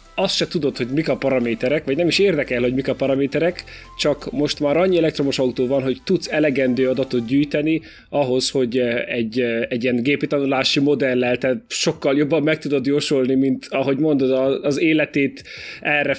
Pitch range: 130-155 Hz